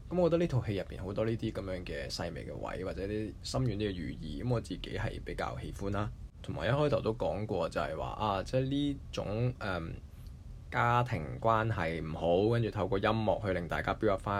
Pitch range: 90-120 Hz